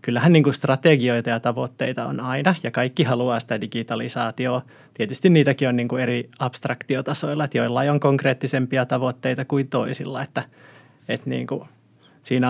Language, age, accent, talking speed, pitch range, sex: Finnish, 20-39, native, 115 wpm, 125-150 Hz, male